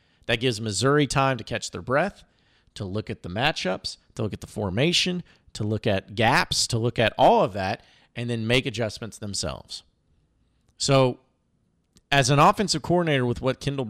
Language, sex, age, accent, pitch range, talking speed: English, male, 40-59, American, 110-155 Hz, 175 wpm